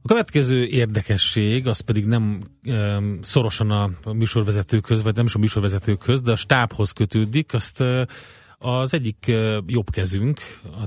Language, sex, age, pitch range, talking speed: Hungarian, male, 30-49, 100-120 Hz, 125 wpm